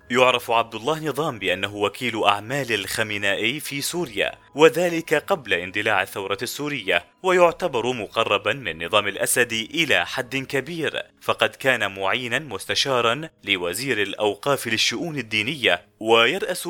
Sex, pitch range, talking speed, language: male, 110-150 Hz, 115 wpm, Arabic